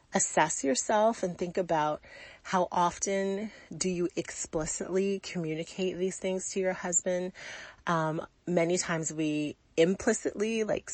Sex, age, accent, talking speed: female, 30-49, American, 120 wpm